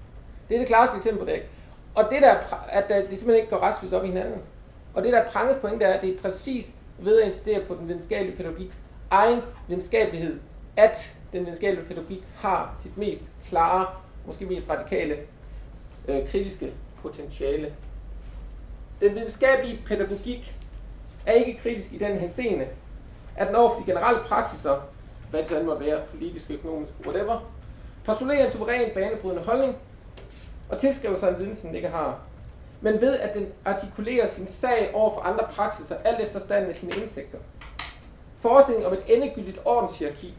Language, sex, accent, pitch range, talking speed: English, male, Danish, 185-230 Hz, 170 wpm